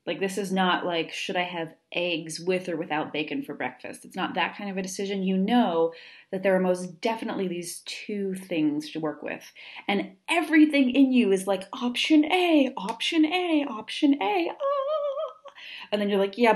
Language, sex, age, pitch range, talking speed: English, female, 30-49, 170-250 Hz, 190 wpm